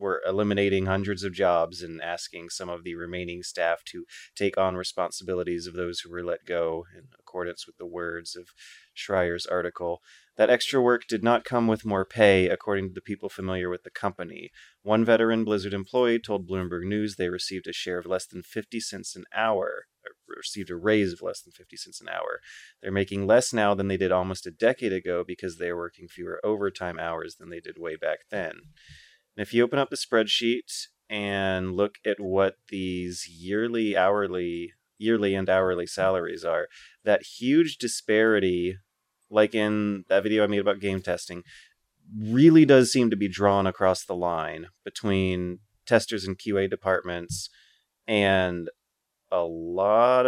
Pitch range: 90-115 Hz